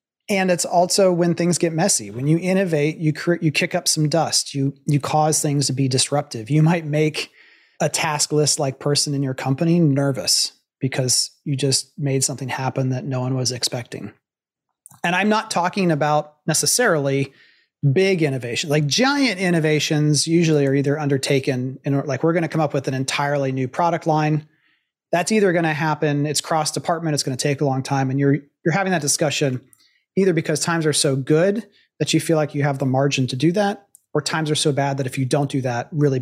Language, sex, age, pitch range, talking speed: English, male, 30-49, 140-170 Hz, 205 wpm